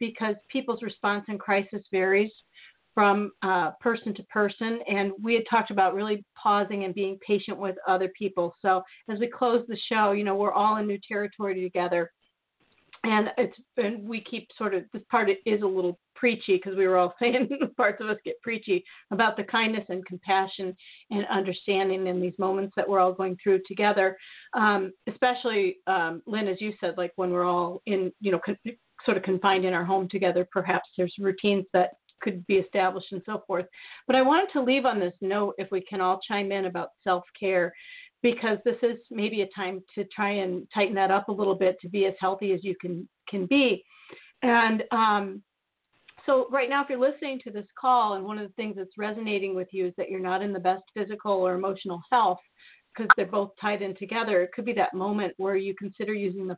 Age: 40-59